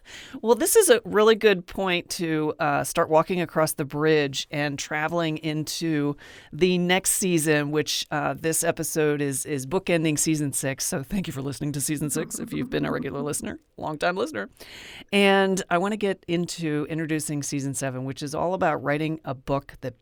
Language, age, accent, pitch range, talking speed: English, 40-59, American, 145-185 Hz, 185 wpm